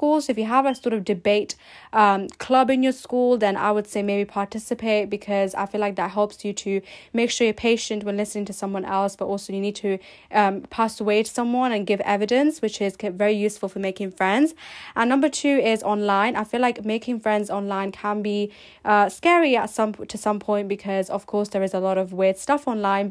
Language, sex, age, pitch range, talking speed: English, female, 10-29, 200-235 Hz, 225 wpm